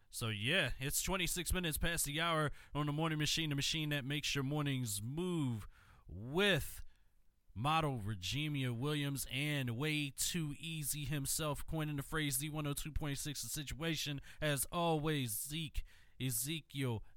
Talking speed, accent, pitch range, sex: 135 wpm, American, 125-170 Hz, male